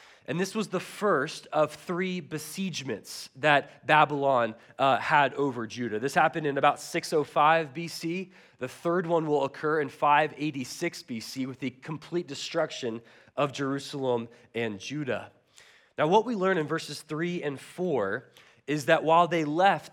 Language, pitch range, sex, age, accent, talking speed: English, 145-175 Hz, male, 20-39, American, 150 wpm